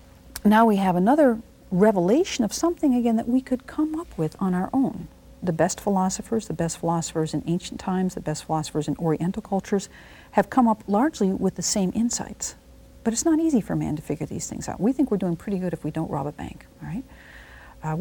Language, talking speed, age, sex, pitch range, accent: English, 215 wpm, 50-69, female, 160-230 Hz, American